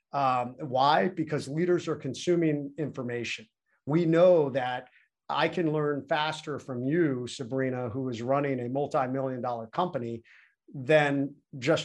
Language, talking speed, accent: English, 135 wpm, American